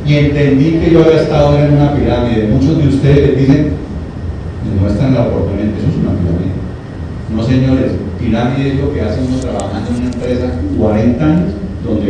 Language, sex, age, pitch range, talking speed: Spanish, male, 40-59, 95-135 Hz, 185 wpm